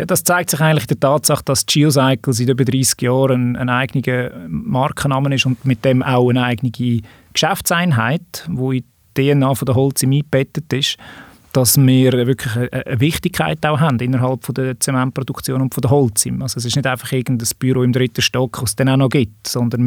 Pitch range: 125-140 Hz